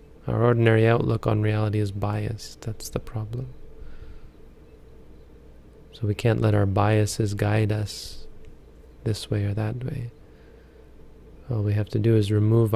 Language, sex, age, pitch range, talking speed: English, male, 30-49, 105-120 Hz, 140 wpm